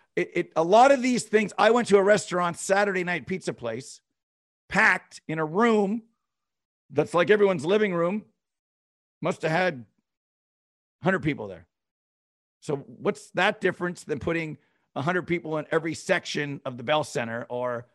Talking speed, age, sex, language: 155 wpm, 50-69, male, English